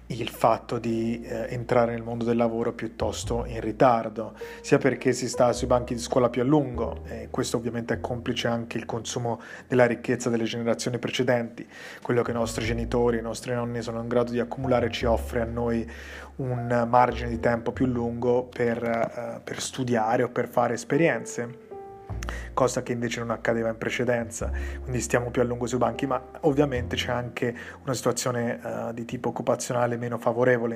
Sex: male